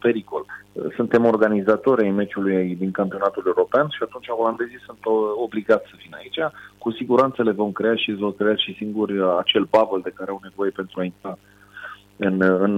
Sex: male